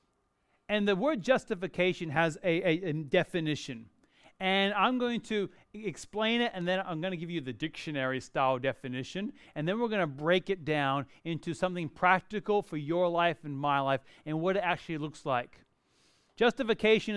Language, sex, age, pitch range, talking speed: English, male, 30-49, 155-200 Hz, 170 wpm